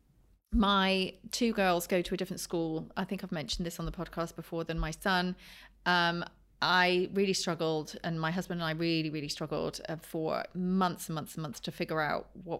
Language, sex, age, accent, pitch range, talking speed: English, female, 30-49, British, 165-190 Hz, 205 wpm